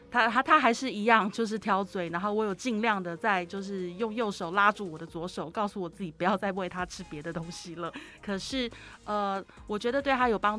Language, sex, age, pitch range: Chinese, female, 20-39, 175-220 Hz